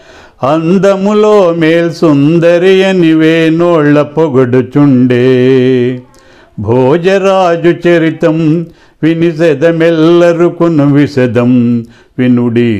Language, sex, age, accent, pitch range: Telugu, male, 50-69, native, 140-190 Hz